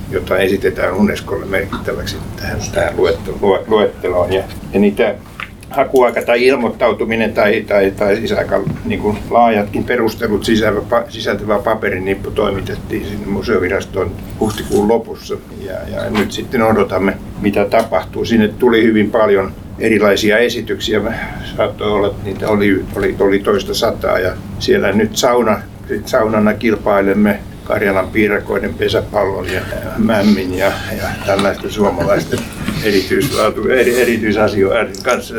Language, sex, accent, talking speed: Finnish, male, native, 125 wpm